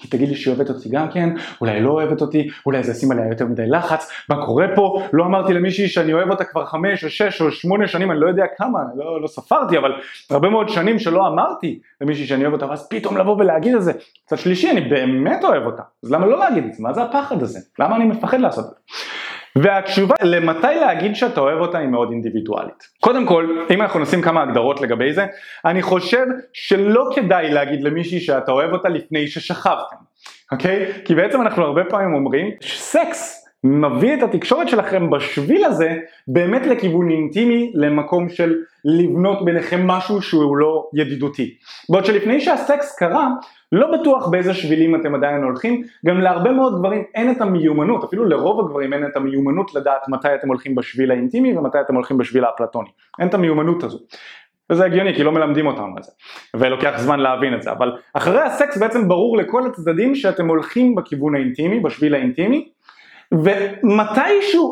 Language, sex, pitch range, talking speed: Hebrew, male, 145-205 Hz, 185 wpm